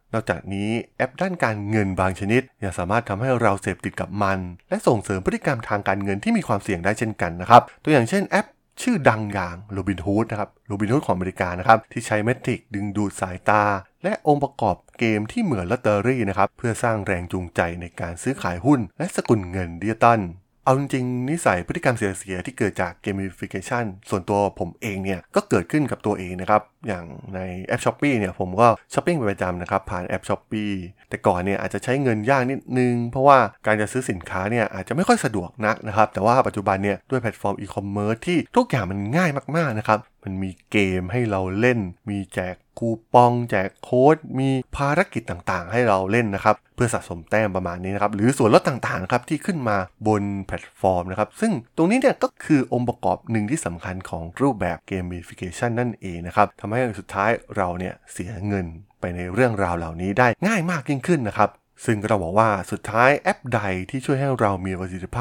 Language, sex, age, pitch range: Thai, male, 20-39, 95-125 Hz